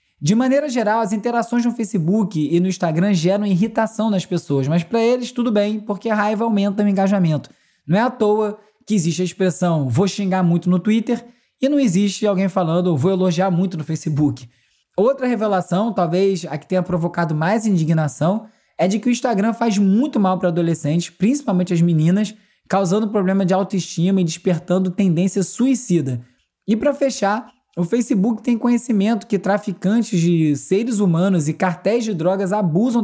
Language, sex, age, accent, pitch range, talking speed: Portuguese, male, 20-39, Brazilian, 180-215 Hz, 175 wpm